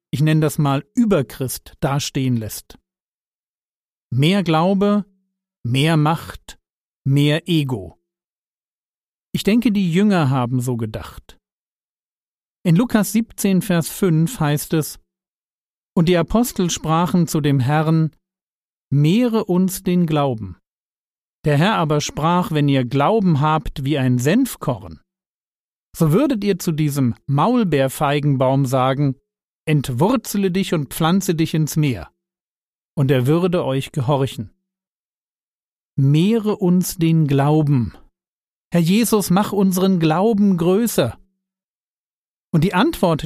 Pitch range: 145-190 Hz